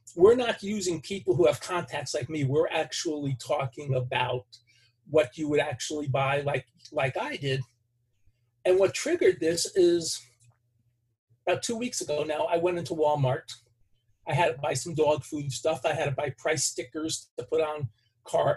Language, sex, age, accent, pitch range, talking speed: English, male, 40-59, American, 120-170 Hz, 175 wpm